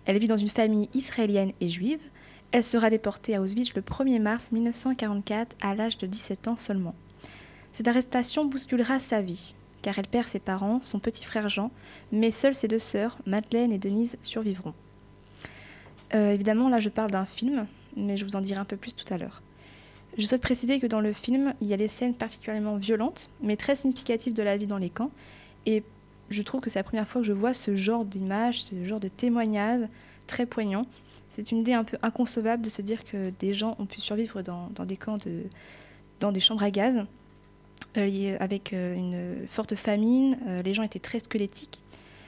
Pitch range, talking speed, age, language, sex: 200-240 Hz, 200 wpm, 20-39, French, female